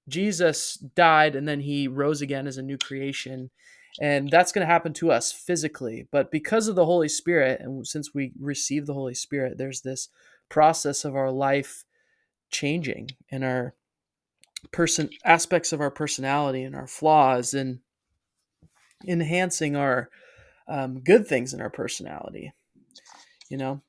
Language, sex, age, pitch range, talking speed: English, male, 20-39, 130-155 Hz, 150 wpm